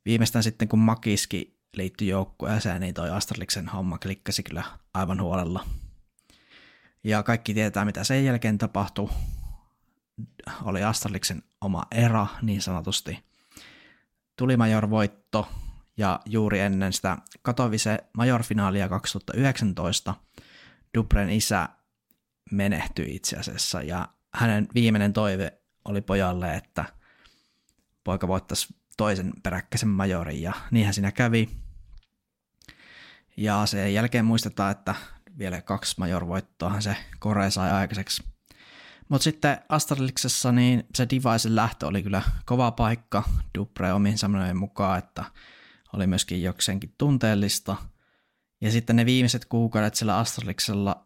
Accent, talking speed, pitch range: native, 115 wpm, 95-110 Hz